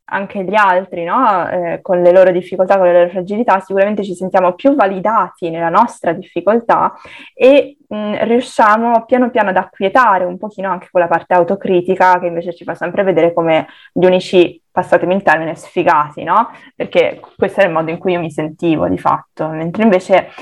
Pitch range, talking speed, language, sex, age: 170-195 Hz, 180 wpm, Italian, female, 20-39